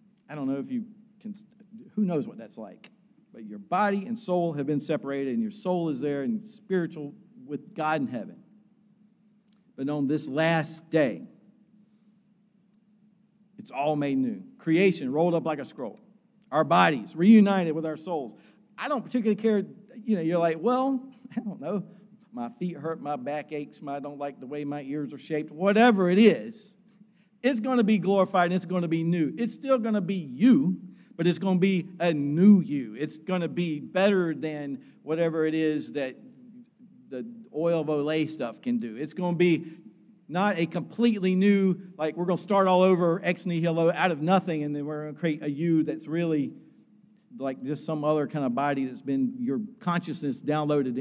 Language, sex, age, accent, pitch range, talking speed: English, male, 50-69, American, 155-215 Hz, 195 wpm